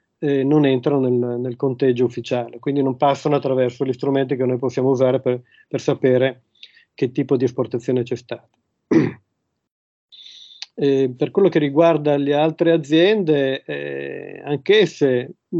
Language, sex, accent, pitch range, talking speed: Italian, male, native, 130-150 Hz, 140 wpm